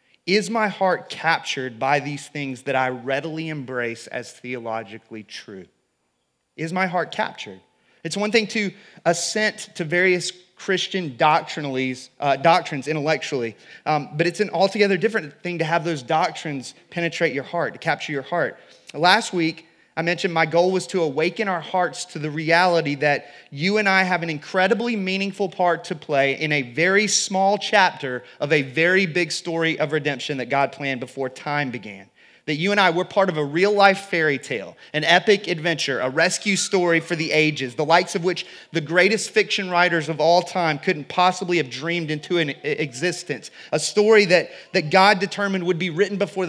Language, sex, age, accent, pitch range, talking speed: English, male, 30-49, American, 145-180 Hz, 180 wpm